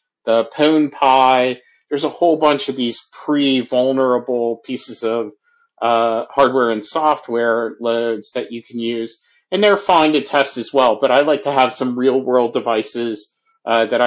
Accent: American